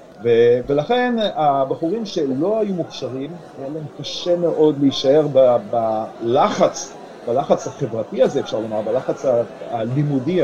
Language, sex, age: Hebrew, male, 40-59